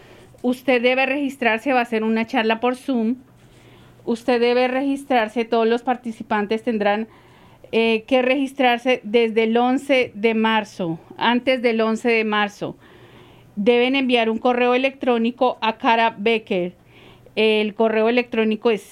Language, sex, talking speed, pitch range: English, female, 135 wpm, 210-245 Hz